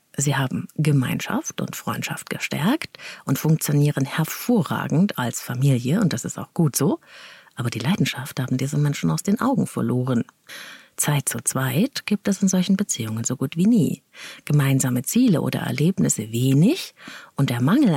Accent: German